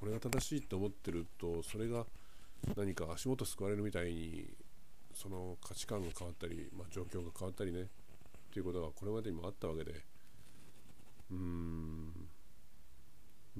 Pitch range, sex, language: 85-105 Hz, male, Japanese